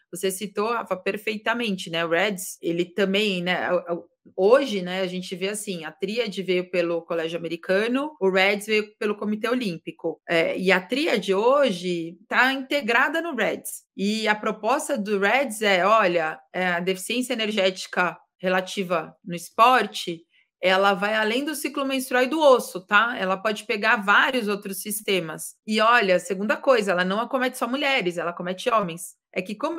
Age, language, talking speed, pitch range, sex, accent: 20-39, Portuguese, 165 wpm, 185-245 Hz, female, Brazilian